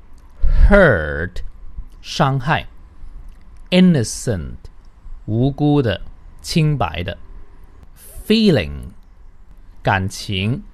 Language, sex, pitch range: Chinese, male, 85-130 Hz